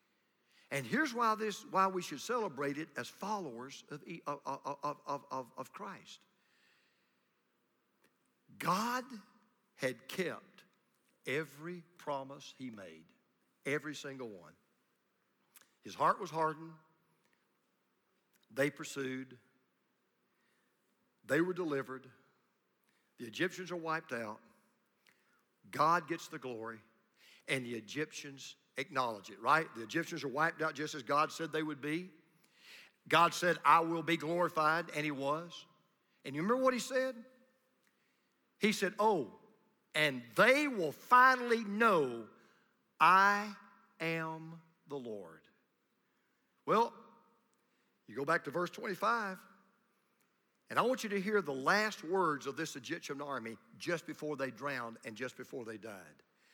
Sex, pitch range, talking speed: male, 140-195 Hz, 125 wpm